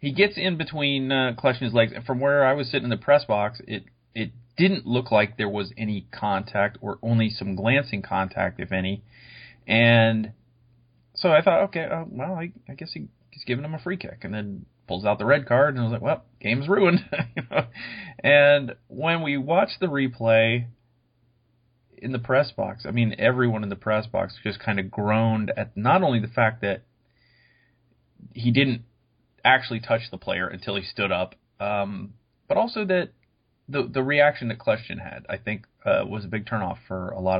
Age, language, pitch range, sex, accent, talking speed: 30-49, English, 105-125 Hz, male, American, 195 wpm